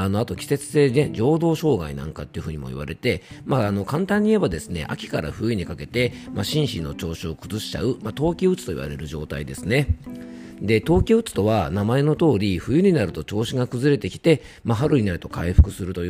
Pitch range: 85-135 Hz